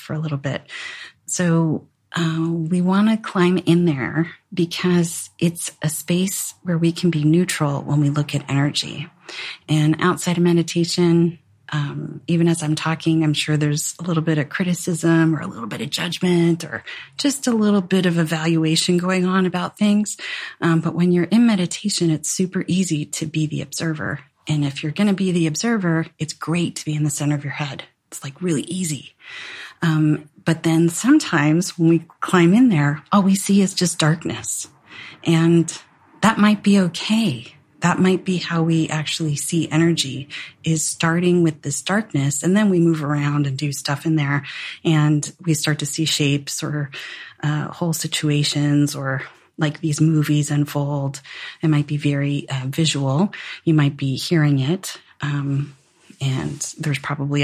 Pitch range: 150-175 Hz